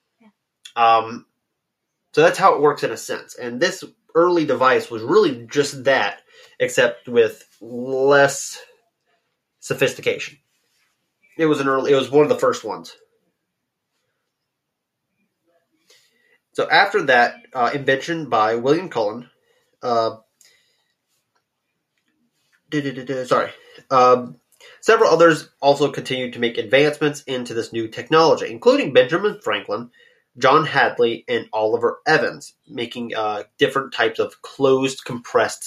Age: 30-49